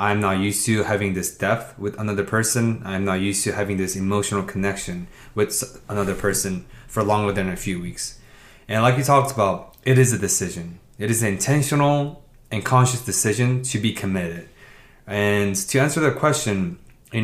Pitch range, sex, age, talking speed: 100-130 Hz, male, 20-39, 180 wpm